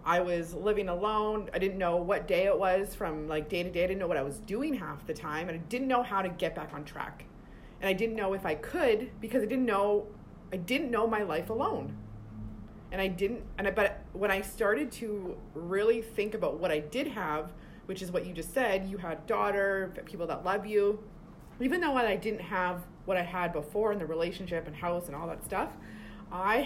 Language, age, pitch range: English, 30-49, 170-215 Hz